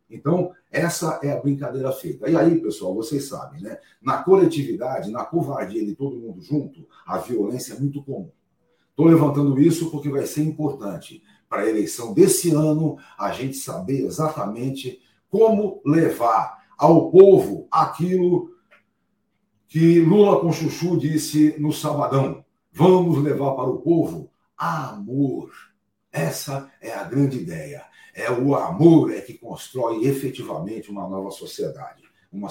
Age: 60-79